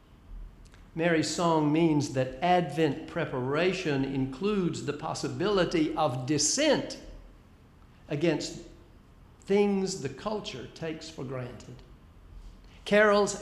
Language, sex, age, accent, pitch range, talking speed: English, male, 60-79, American, 135-195 Hz, 85 wpm